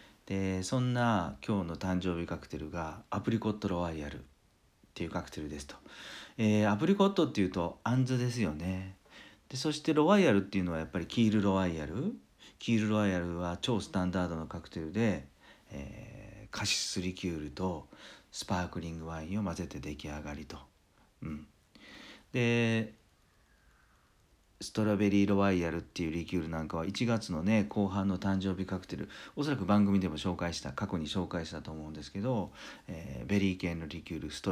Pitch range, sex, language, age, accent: 80-110 Hz, male, Japanese, 50-69, native